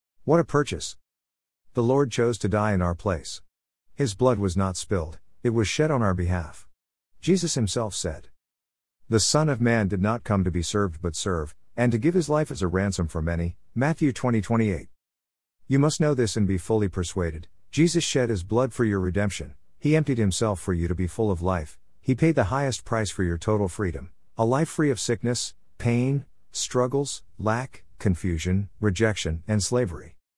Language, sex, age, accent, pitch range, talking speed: English, male, 50-69, American, 85-120 Hz, 190 wpm